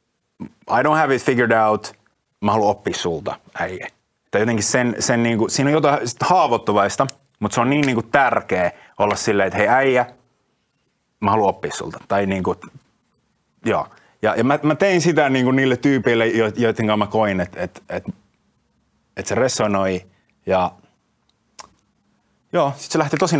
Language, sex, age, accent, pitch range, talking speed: Finnish, male, 30-49, native, 100-135 Hz, 155 wpm